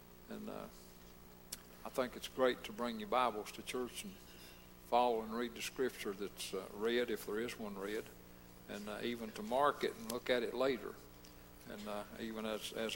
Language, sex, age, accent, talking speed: English, male, 60-79, American, 195 wpm